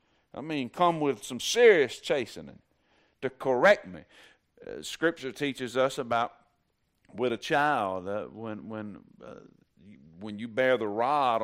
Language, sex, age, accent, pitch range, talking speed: English, male, 50-69, American, 110-140 Hz, 140 wpm